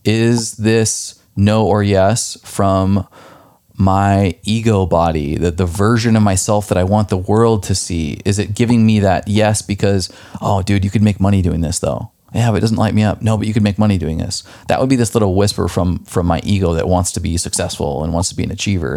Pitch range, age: 95-110 Hz, 30-49